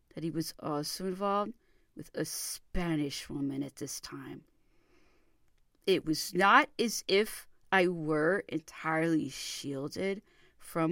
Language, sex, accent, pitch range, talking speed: English, female, American, 160-220 Hz, 120 wpm